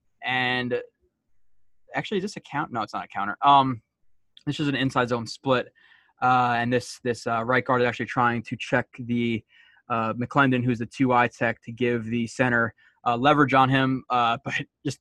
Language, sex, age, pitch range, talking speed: English, male, 20-39, 120-135 Hz, 195 wpm